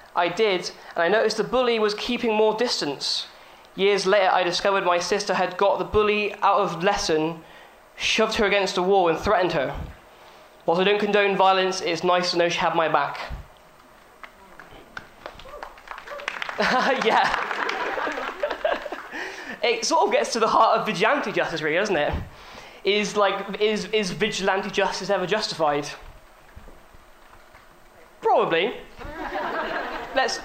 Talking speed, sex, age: 140 wpm, male, 10-29